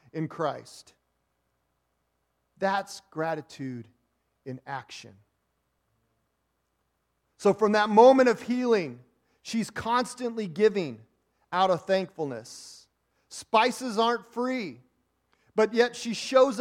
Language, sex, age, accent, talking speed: English, male, 40-59, American, 90 wpm